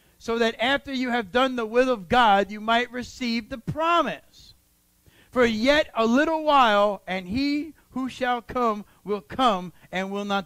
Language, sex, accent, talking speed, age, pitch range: English, male, American, 170 wpm, 50-69, 185-280 Hz